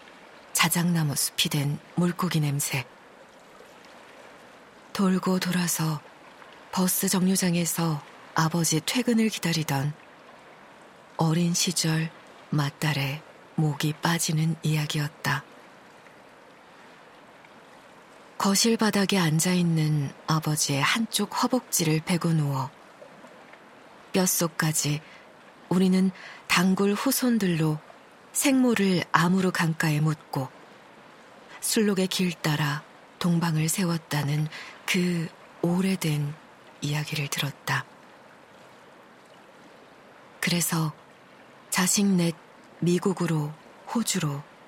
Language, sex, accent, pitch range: Korean, female, native, 155-185 Hz